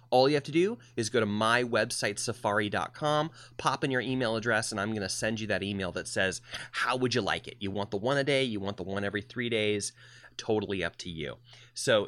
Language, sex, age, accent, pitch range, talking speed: English, male, 30-49, American, 105-140 Hz, 245 wpm